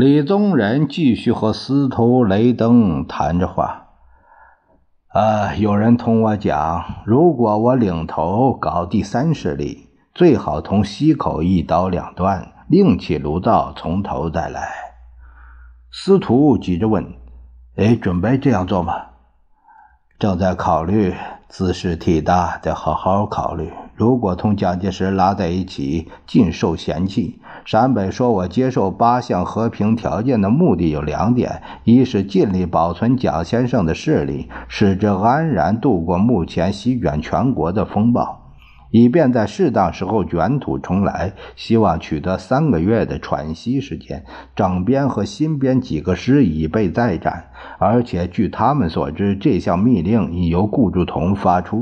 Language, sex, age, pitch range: Chinese, male, 50-69, 90-120 Hz